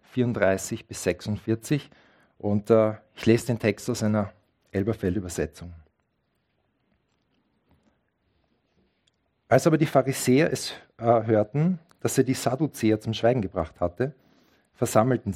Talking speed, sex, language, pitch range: 110 wpm, male, German, 105-140 Hz